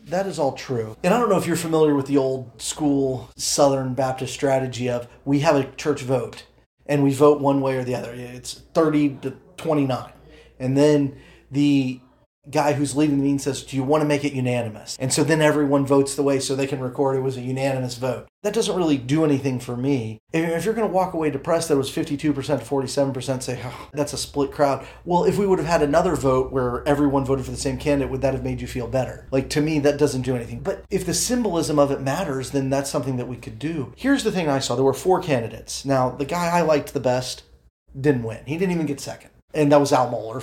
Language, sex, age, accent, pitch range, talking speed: English, male, 30-49, American, 130-155 Hz, 245 wpm